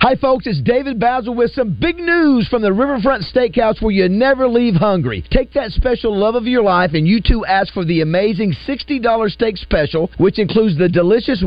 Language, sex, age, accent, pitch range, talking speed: English, male, 50-69, American, 185-250 Hz, 205 wpm